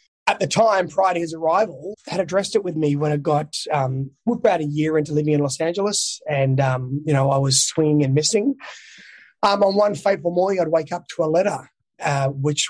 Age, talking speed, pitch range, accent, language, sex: 20-39, 215 wpm, 145-170 Hz, Australian, English, male